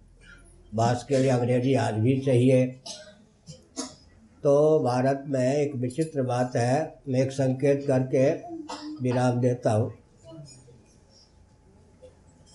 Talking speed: 100 wpm